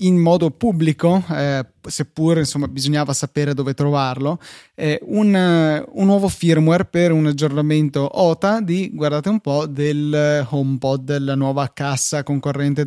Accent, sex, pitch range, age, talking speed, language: native, male, 140-170 Hz, 20-39, 135 wpm, Italian